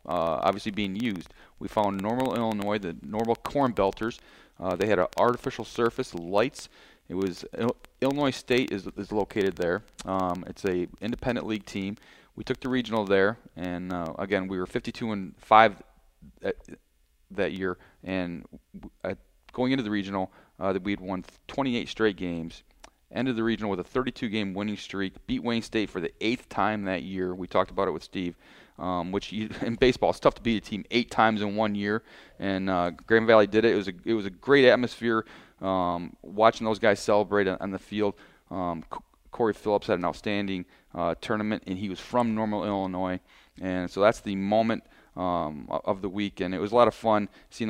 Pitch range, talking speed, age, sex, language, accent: 95-110 Hz, 200 wpm, 40-59, male, English, American